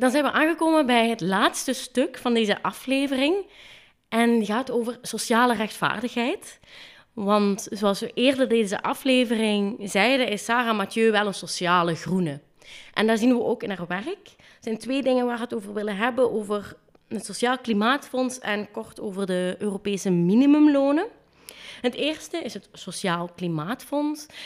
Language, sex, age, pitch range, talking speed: Dutch, female, 20-39, 195-250 Hz, 160 wpm